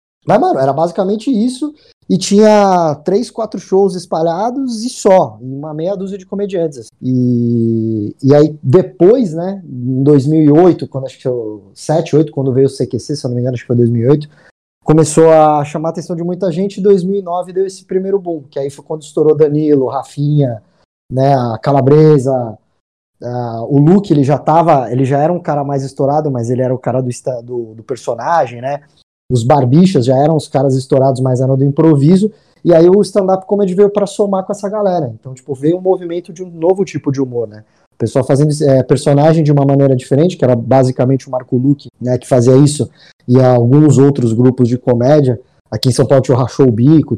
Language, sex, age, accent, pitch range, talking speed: Portuguese, male, 20-39, Brazilian, 130-185 Hz, 205 wpm